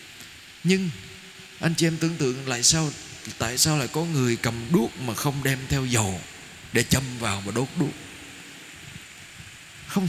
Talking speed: 160 wpm